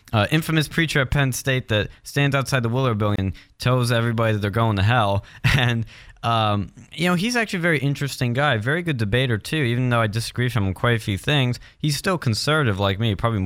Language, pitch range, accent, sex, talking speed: English, 105-140 Hz, American, male, 225 wpm